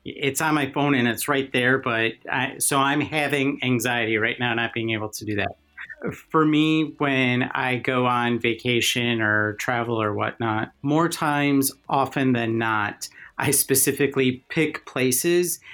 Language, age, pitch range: English, 40-59, 110-130 Hz